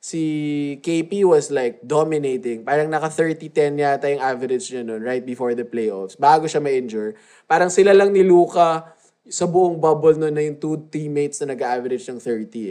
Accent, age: native, 20-39